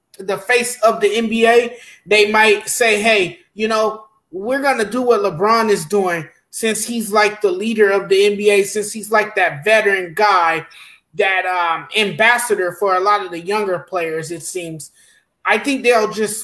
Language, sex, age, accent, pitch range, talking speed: English, male, 20-39, American, 205-250 Hz, 175 wpm